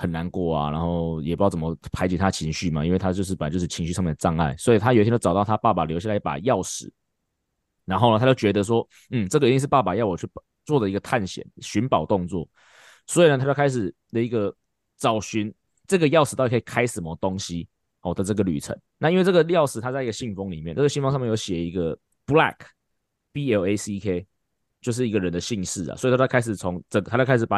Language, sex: Chinese, male